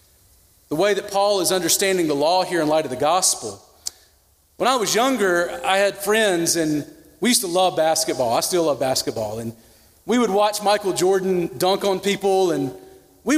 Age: 40-59